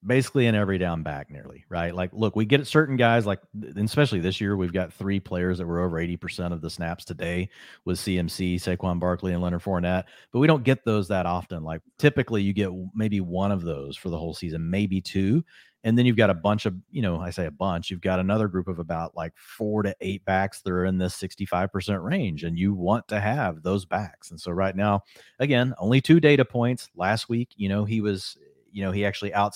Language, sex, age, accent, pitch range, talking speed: English, male, 40-59, American, 90-110 Hz, 230 wpm